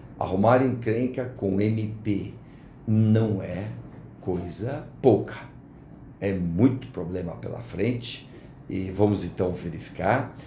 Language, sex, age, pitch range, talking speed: Portuguese, male, 60-79, 95-120 Hz, 95 wpm